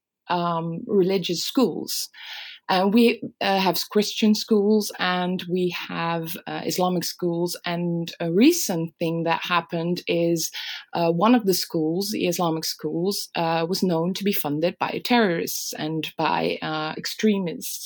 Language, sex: English, female